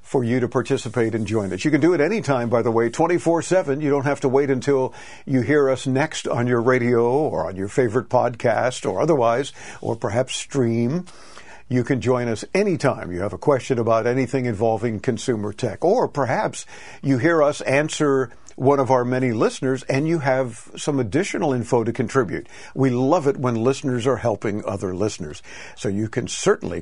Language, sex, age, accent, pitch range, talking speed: English, male, 60-79, American, 120-150 Hz, 190 wpm